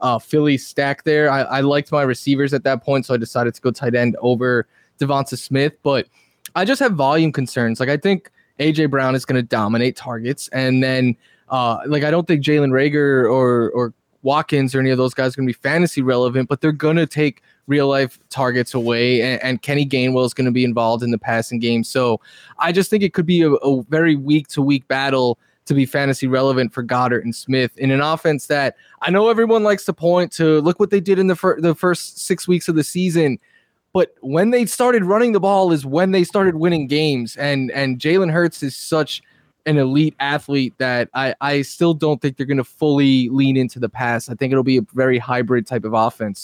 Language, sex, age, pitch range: English, male, 20-39, 125-155 Hz